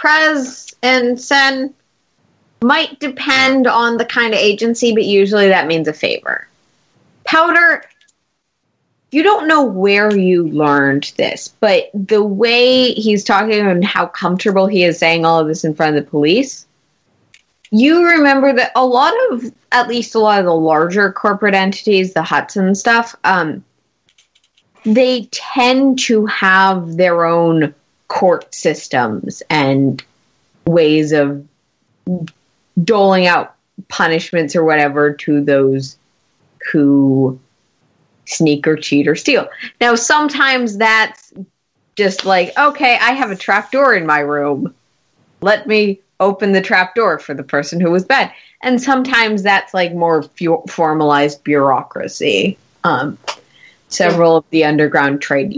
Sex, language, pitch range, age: female, English, 160-240 Hz, 30-49